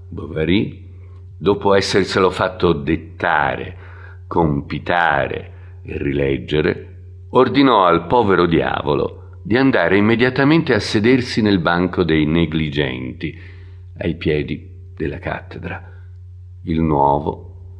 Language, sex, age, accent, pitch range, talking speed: Italian, male, 50-69, native, 80-95 Hz, 90 wpm